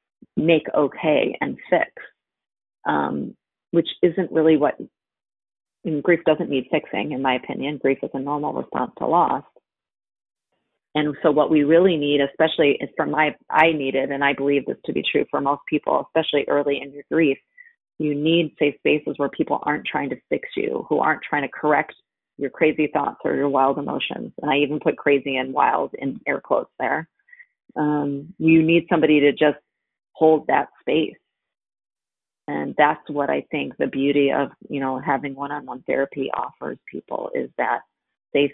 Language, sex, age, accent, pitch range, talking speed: English, female, 30-49, American, 140-160 Hz, 175 wpm